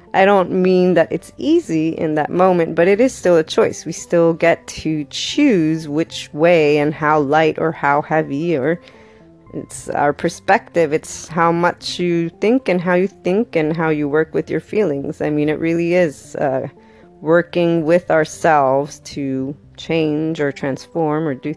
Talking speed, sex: 175 wpm, female